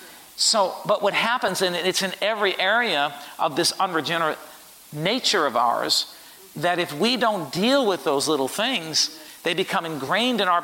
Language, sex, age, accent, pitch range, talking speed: English, male, 50-69, American, 150-205 Hz, 165 wpm